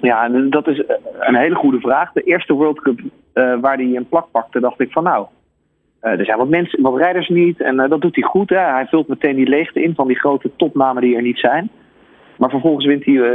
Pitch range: 130-155 Hz